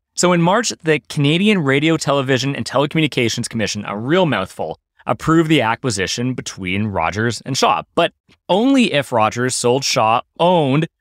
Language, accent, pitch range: English, American, 115-155 Hz